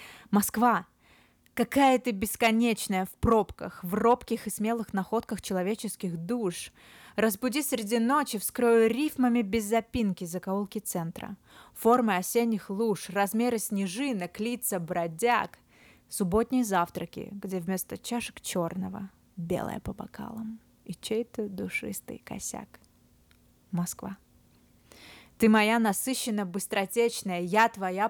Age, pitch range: 20-39, 180-225 Hz